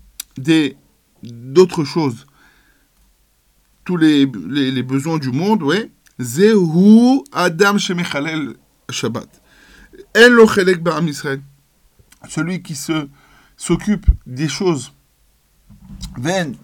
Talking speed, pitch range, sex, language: 80 wpm, 140-185 Hz, male, French